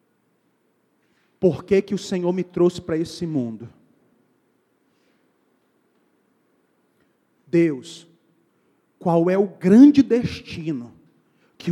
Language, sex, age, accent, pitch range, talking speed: Portuguese, male, 40-59, Brazilian, 140-195 Hz, 85 wpm